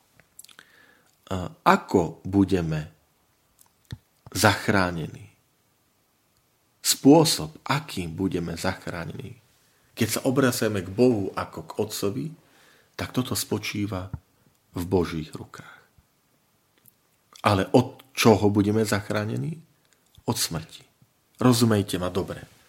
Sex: male